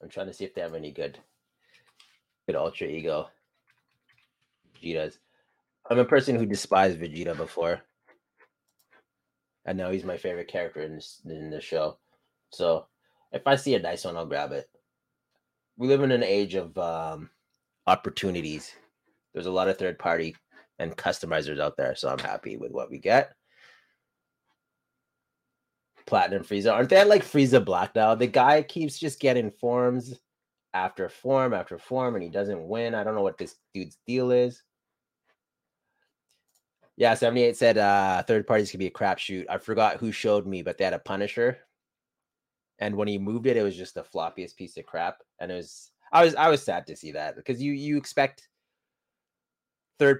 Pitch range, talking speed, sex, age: 90-125 Hz, 175 wpm, male, 30-49